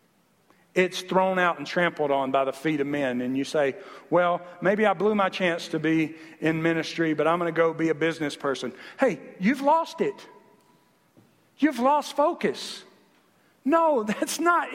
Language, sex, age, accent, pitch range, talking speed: English, male, 50-69, American, 200-280 Hz, 175 wpm